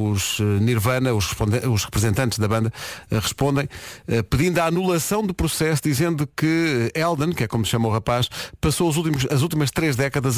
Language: Portuguese